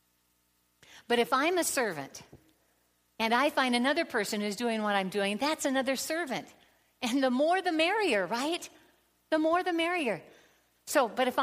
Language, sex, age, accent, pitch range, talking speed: English, female, 60-79, American, 155-235 Hz, 165 wpm